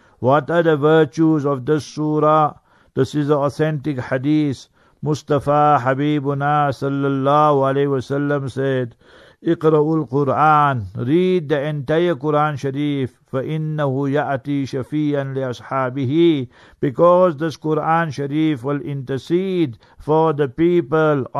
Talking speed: 110 wpm